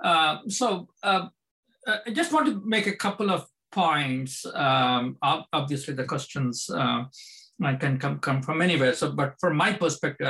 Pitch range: 135-195 Hz